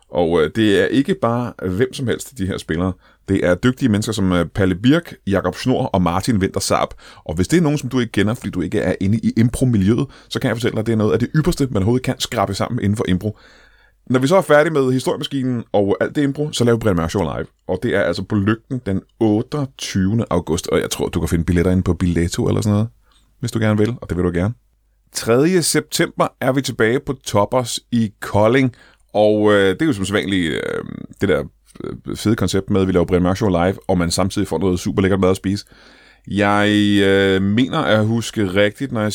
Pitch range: 95-120 Hz